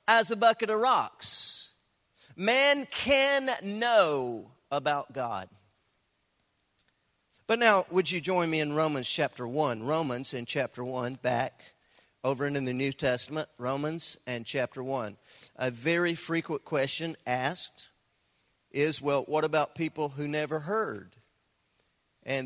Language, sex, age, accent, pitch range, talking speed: English, male, 40-59, American, 130-185 Hz, 130 wpm